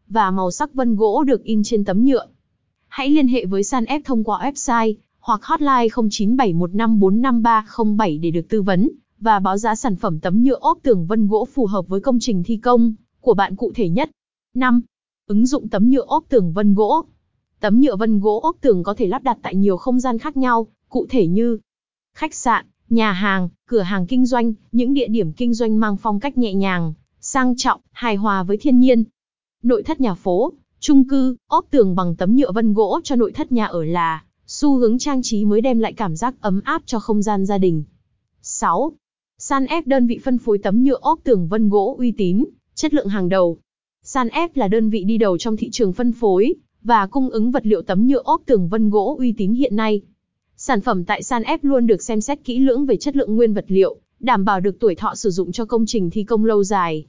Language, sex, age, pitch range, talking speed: Vietnamese, female, 20-39, 205-255 Hz, 225 wpm